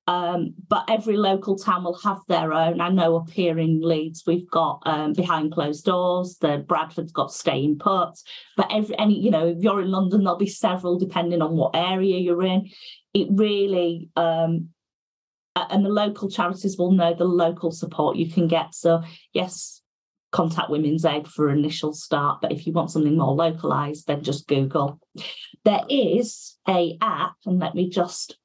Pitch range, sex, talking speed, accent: 165-200 Hz, female, 180 wpm, British